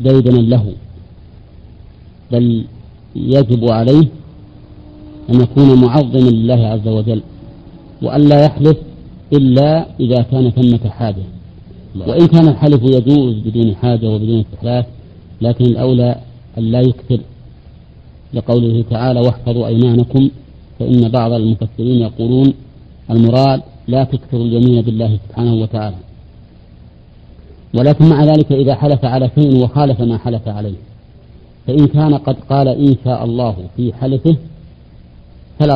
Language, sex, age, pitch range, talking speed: Arabic, male, 50-69, 110-130 Hz, 110 wpm